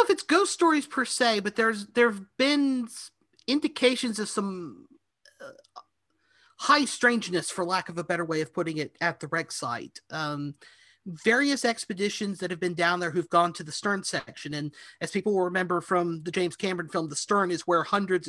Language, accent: English, American